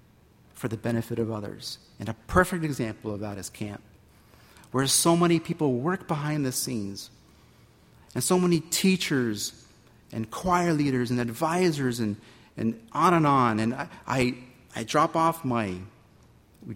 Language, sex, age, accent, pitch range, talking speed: English, male, 40-59, American, 110-165 Hz, 155 wpm